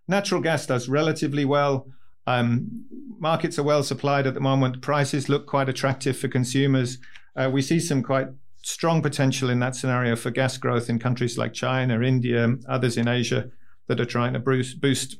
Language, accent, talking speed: English, British, 180 wpm